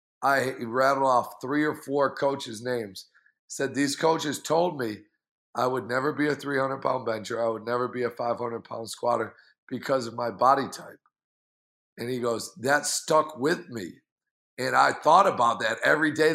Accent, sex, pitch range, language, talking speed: American, male, 135-155 Hz, English, 170 wpm